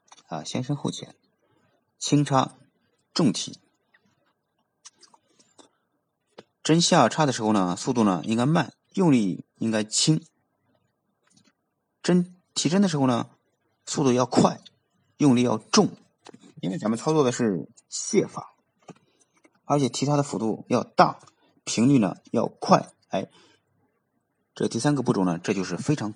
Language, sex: Chinese, male